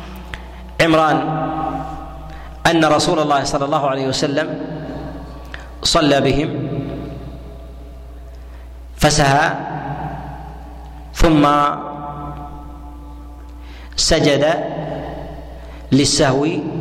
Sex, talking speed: male, 50 wpm